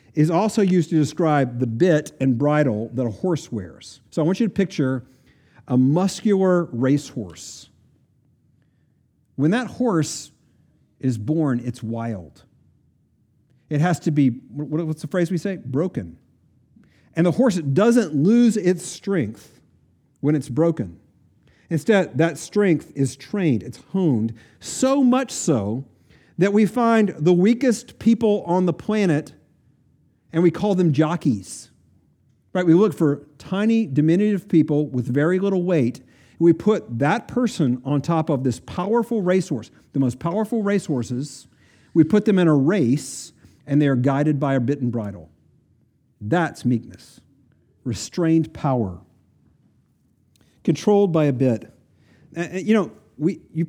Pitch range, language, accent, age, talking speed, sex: 130-180 Hz, English, American, 50-69, 140 wpm, male